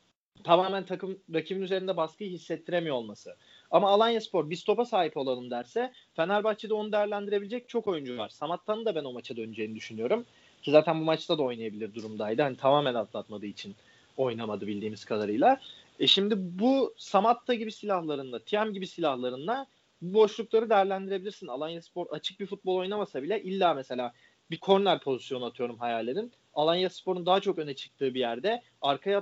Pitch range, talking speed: 150-215 Hz, 155 wpm